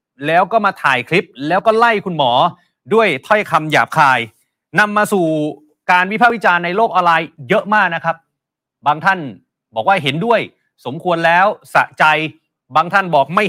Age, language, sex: 30-49, Thai, male